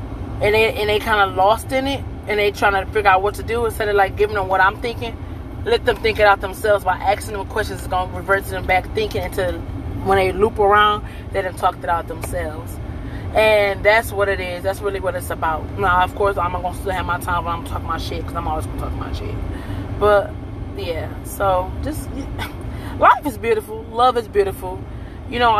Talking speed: 240 wpm